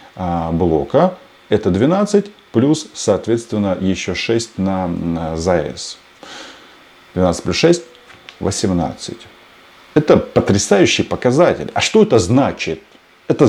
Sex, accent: male, native